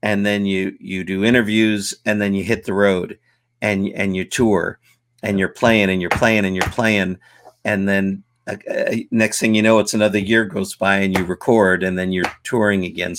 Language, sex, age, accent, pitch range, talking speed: English, male, 50-69, American, 100-115 Hz, 205 wpm